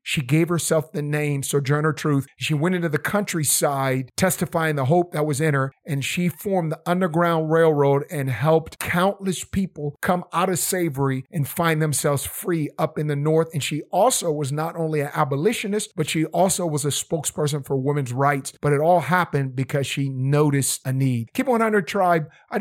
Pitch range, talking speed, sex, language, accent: 145-170 Hz, 190 wpm, male, English, American